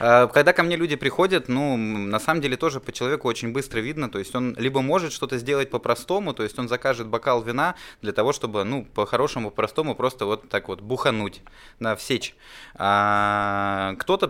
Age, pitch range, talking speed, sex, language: 20-39, 105-130 Hz, 180 wpm, male, Russian